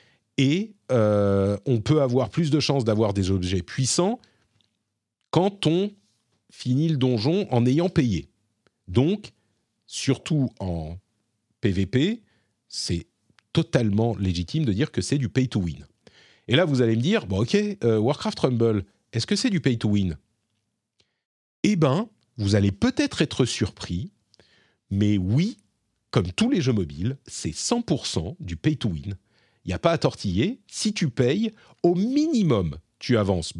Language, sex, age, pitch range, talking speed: French, male, 40-59, 105-155 Hz, 140 wpm